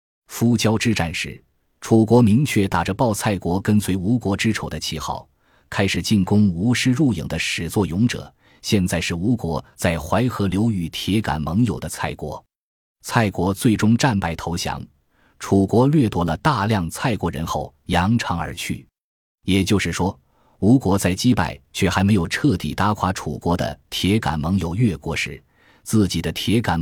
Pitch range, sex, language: 85-110 Hz, male, Chinese